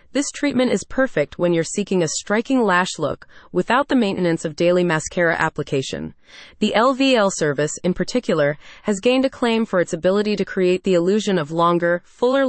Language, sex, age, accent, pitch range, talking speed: English, female, 30-49, American, 170-235 Hz, 175 wpm